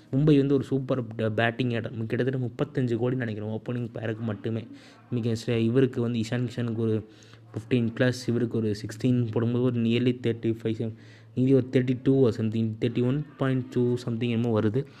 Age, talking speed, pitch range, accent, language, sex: 20-39, 145 wpm, 115-135 Hz, native, Tamil, male